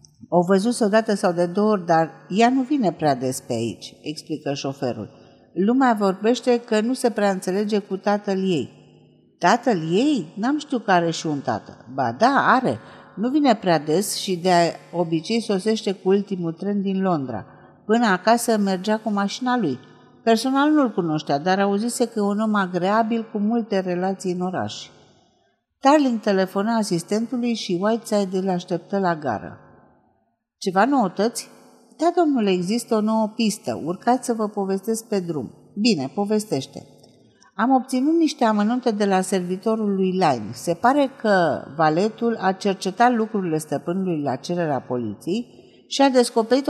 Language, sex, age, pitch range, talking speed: Romanian, female, 50-69, 175-230 Hz, 155 wpm